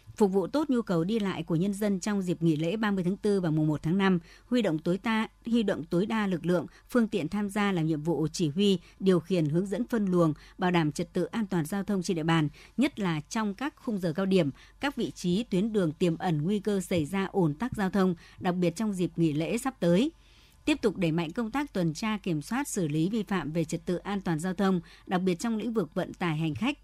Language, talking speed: Vietnamese, 265 wpm